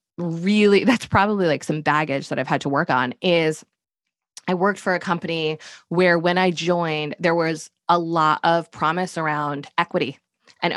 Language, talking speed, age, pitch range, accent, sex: English, 175 wpm, 20-39, 155-200 Hz, American, female